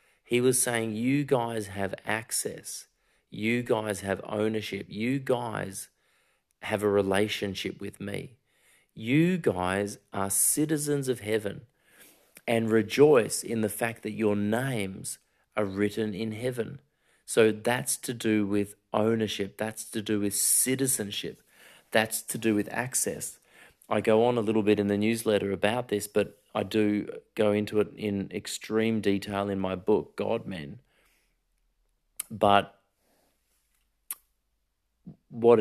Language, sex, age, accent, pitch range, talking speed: English, male, 30-49, Australian, 100-115 Hz, 135 wpm